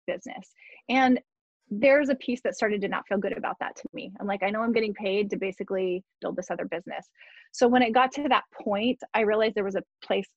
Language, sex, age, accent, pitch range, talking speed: English, female, 20-39, American, 195-255 Hz, 235 wpm